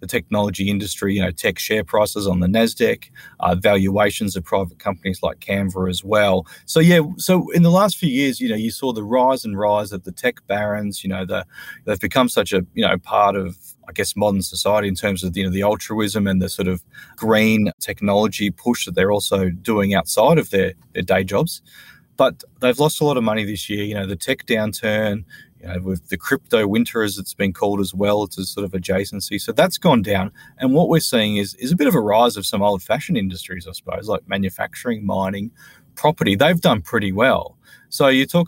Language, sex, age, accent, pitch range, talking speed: English, male, 20-39, Australian, 95-110 Hz, 220 wpm